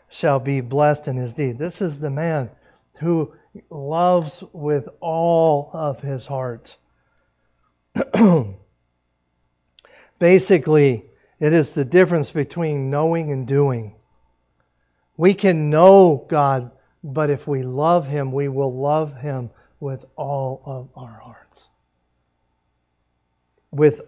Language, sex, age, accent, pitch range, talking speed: English, male, 50-69, American, 110-165 Hz, 110 wpm